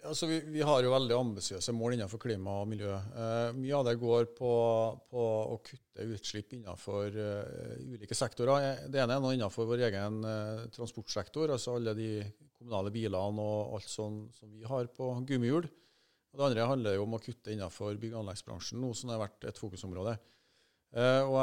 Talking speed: 185 wpm